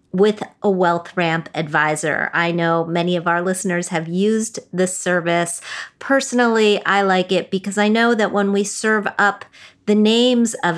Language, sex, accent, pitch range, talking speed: English, female, American, 170-210 Hz, 160 wpm